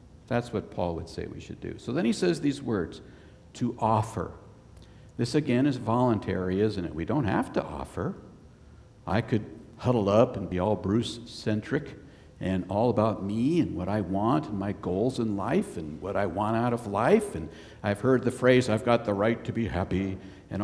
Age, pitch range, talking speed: 60-79, 100-135 Hz, 200 wpm